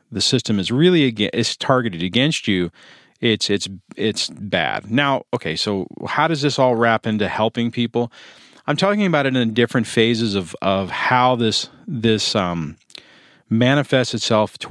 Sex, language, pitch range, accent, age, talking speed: male, English, 100-135 Hz, American, 40-59, 160 wpm